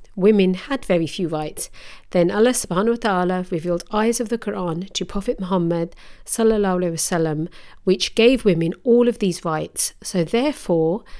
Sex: female